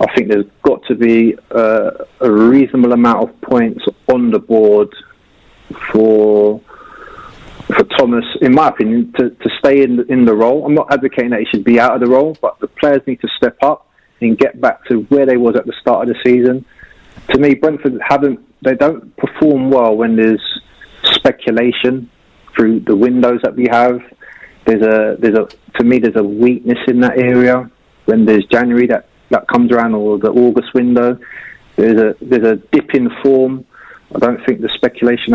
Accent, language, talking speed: British, English, 190 wpm